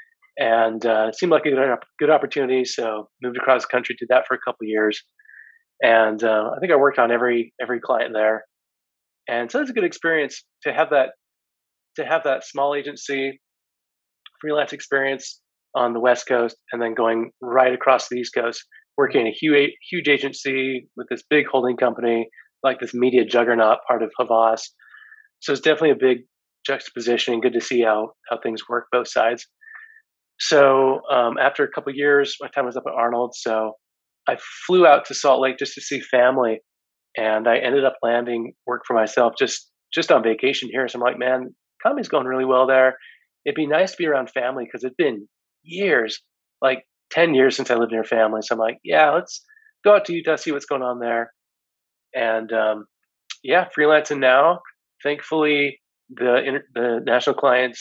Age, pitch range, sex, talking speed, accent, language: 30-49, 115-145 Hz, male, 190 wpm, American, English